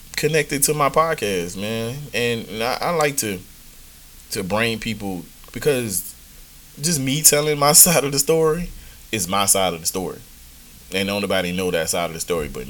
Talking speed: 170 wpm